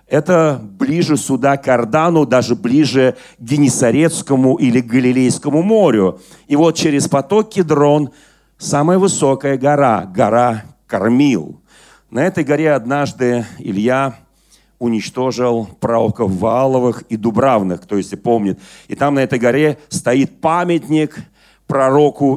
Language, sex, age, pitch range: Russian, male, 40-59, 125-165 Hz